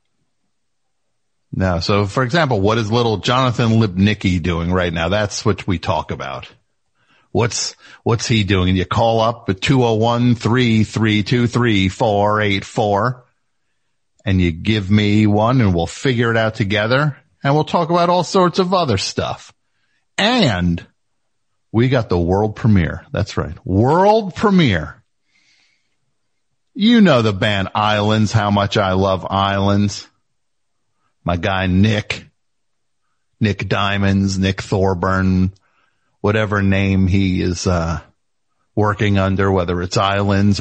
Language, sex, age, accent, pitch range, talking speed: English, male, 50-69, American, 95-115 Hz, 125 wpm